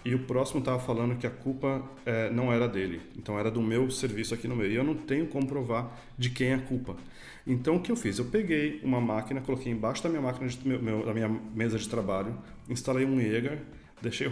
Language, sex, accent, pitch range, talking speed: Portuguese, male, Brazilian, 105-125 Hz, 240 wpm